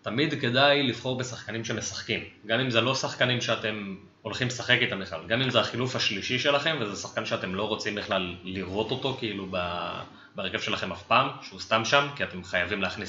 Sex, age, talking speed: male, 20-39, 190 wpm